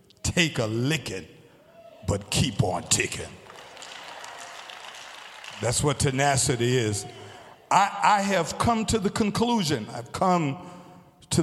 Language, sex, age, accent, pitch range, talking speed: English, male, 50-69, American, 100-160 Hz, 110 wpm